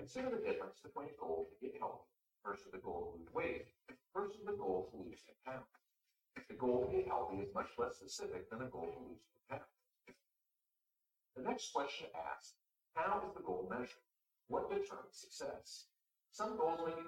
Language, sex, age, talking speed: Arabic, male, 50-69, 190 wpm